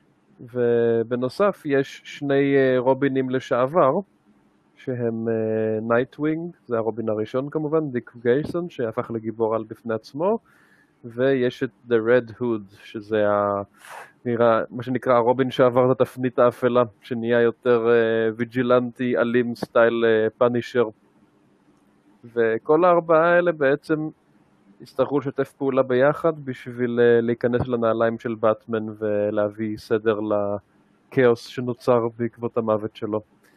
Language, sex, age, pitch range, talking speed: Hebrew, male, 20-39, 115-135 Hz, 105 wpm